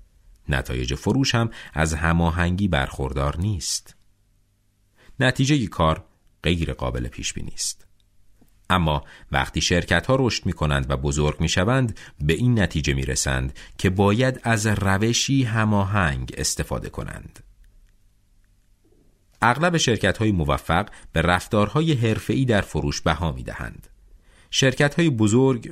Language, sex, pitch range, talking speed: Persian, male, 80-115 Hz, 120 wpm